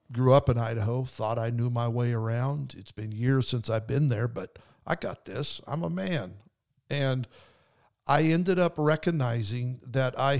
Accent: American